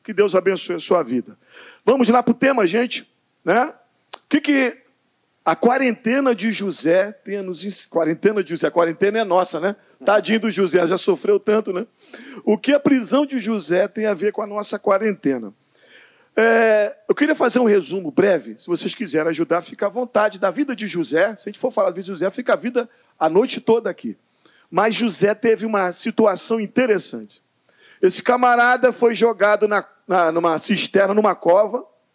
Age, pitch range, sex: 40-59, 190-250 Hz, male